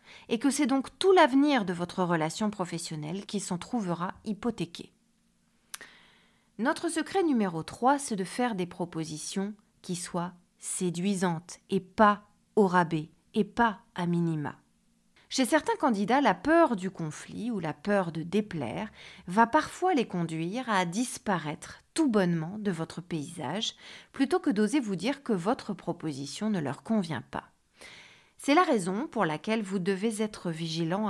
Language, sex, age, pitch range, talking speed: French, female, 40-59, 170-235 Hz, 150 wpm